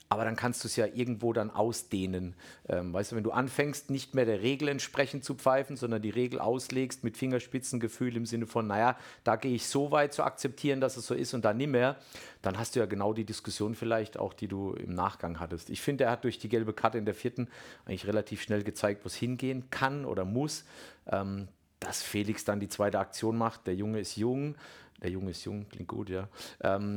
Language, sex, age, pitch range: German, male, 50-69, 100-125 Hz